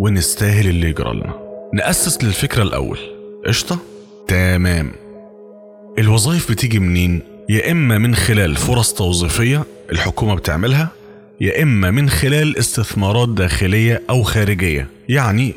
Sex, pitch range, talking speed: male, 90-130 Hz, 110 wpm